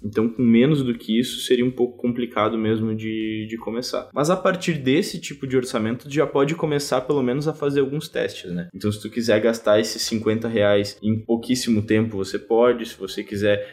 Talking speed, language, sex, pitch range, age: 205 wpm, Portuguese, male, 105-140 Hz, 10-29